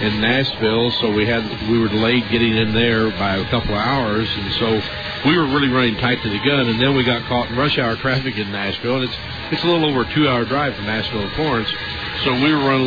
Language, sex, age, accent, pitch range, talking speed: English, male, 50-69, American, 105-120 Hz, 250 wpm